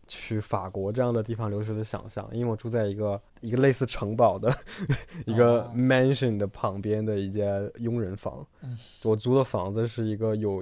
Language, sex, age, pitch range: Chinese, male, 20-39, 105-125 Hz